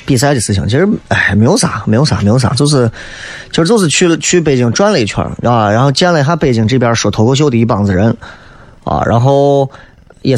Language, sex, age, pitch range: Chinese, male, 20-39, 110-150 Hz